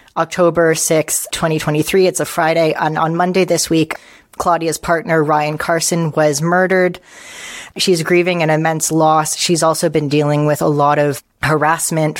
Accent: American